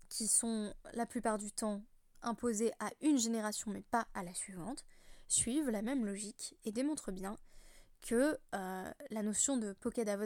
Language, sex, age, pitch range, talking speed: French, female, 20-39, 205-255 Hz, 165 wpm